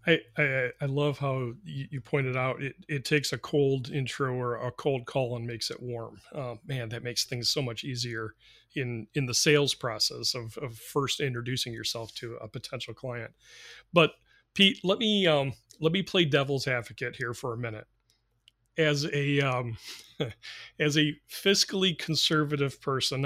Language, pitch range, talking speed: English, 125-150 Hz, 170 wpm